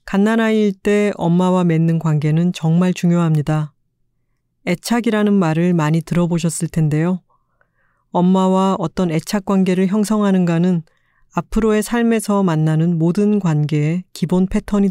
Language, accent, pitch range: Korean, native, 155-195 Hz